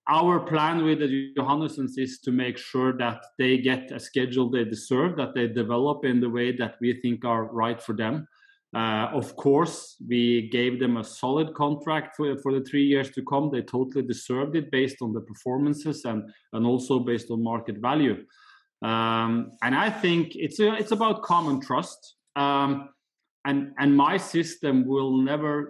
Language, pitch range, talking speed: English, 125-145 Hz, 175 wpm